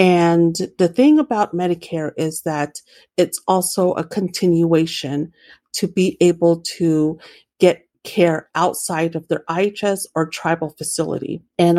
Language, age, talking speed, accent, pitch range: English, 50-69, 125 wpm, American, 165-190 Hz